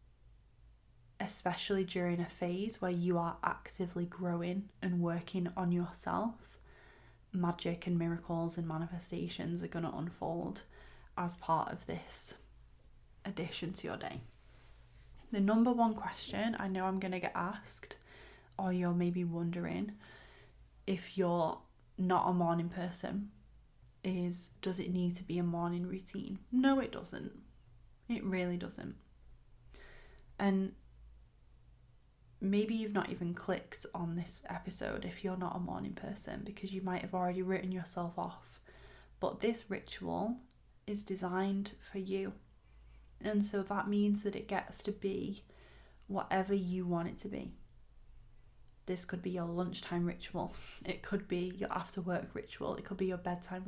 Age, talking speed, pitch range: 20-39, 145 wpm, 170-195 Hz